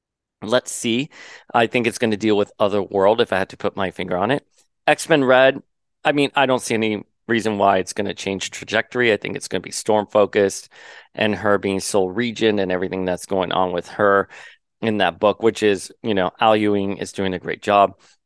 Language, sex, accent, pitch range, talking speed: English, male, American, 95-115 Hz, 225 wpm